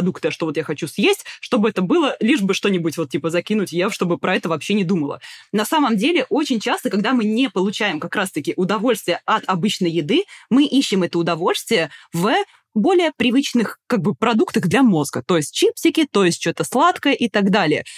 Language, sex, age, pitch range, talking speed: Russian, female, 20-39, 180-255 Hz, 195 wpm